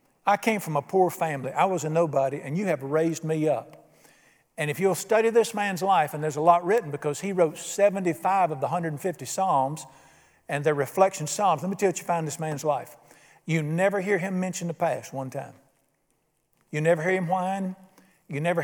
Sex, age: male, 50-69